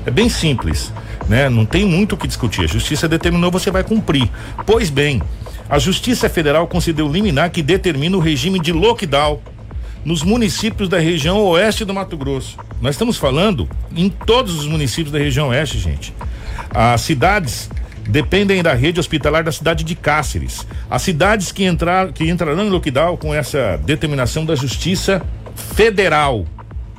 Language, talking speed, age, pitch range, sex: Portuguese, 160 wpm, 60-79, 120-180 Hz, male